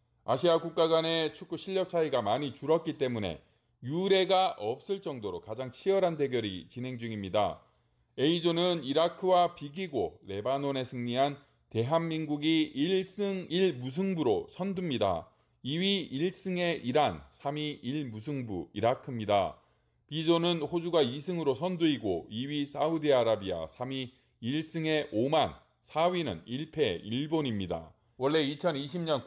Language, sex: Korean, male